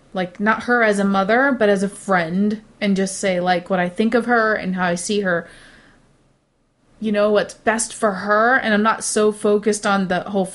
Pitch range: 185-225 Hz